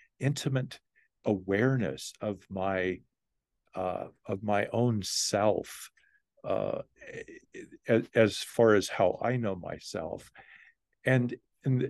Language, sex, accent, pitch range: English, male, American, 100-140 Hz